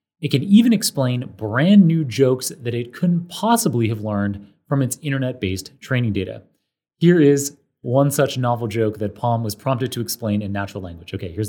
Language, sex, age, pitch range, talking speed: English, male, 30-49, 105-155 Hz, 185 wpm